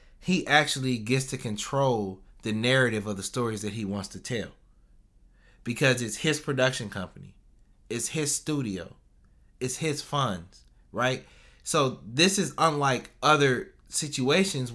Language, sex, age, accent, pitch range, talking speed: English, male, 20-39, American, 125-160 Hz, 135 wpm